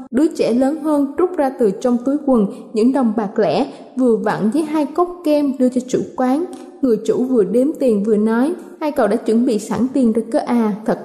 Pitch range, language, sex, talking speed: 235-295 Hz, Vietnamese, female, 230 wpm